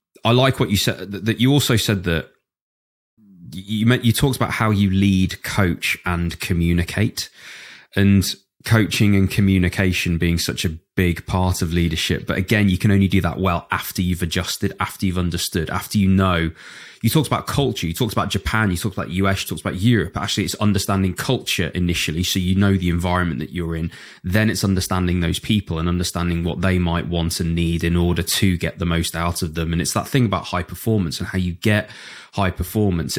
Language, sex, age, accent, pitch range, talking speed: English, male, 20-39, British, 85-105 Hz, 205 wpm